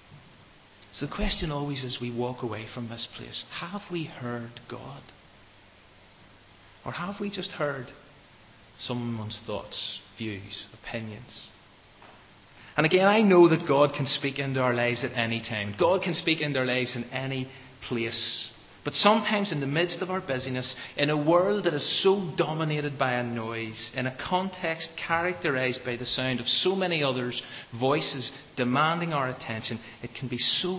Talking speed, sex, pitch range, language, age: 165 wpm, male, 115-155 Hz, English, 30-49